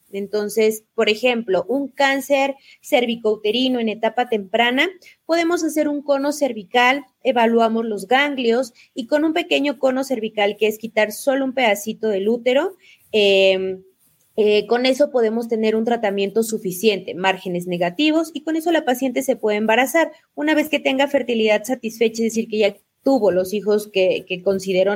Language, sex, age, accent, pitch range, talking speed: Spanish, female, 20-39, Mexican, 205-260 Hz, 160 wpm